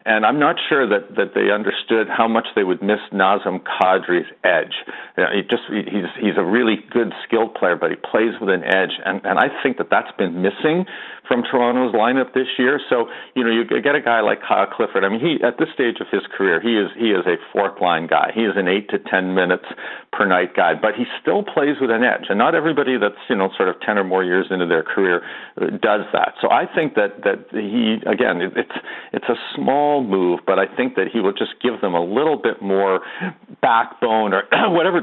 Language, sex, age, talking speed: English, male, 50-69, 230 wpm